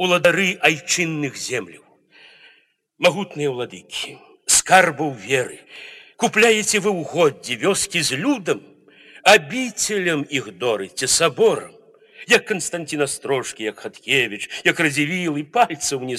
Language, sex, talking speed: Polish, male, 105 wpm